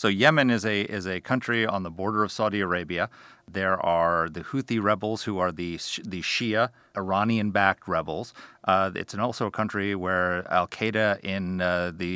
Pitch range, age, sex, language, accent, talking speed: 90-110 Hz, 40-59, male, English, American, 185 wpm